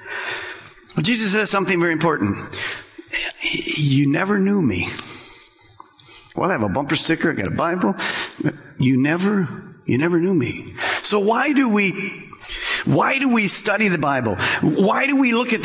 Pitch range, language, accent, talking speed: 145-215 Hz, English, American, 155 wpm